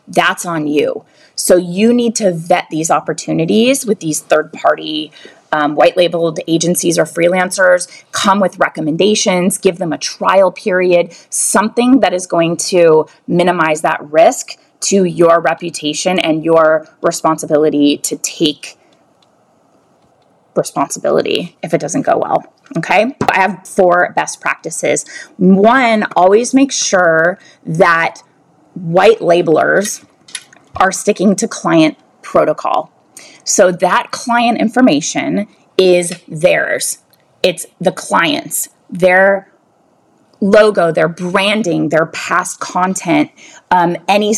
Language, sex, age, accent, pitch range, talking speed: English, female, 20-39, American, 165-200 Hz, 110 wpm